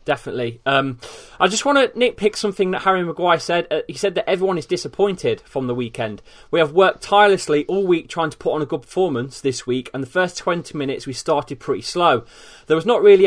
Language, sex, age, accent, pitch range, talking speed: English, male, 20-39, British, 145-195 Hz, 225 wpm